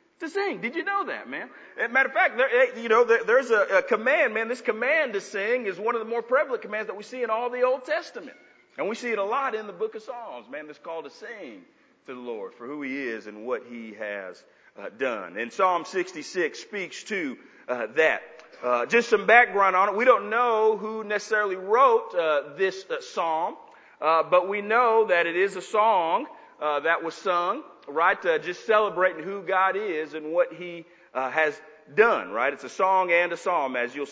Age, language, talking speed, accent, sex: 40-59, English, 225 wpm, American, male